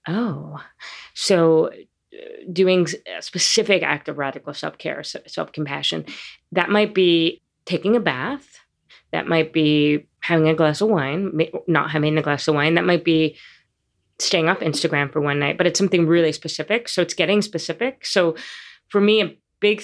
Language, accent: English, American